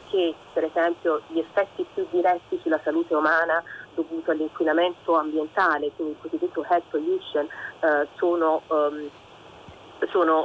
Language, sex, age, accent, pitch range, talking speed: Italian, female, 30-49, native, 160-190 Hz, 125 wpm